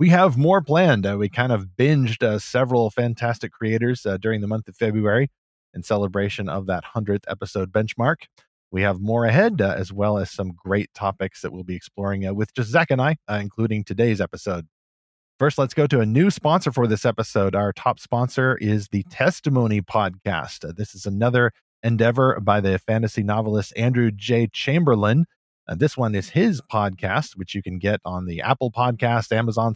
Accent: American